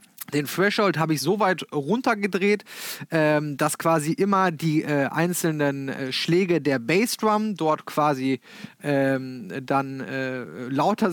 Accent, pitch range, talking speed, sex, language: German, 150-200 Hz, 125 wpm, male, German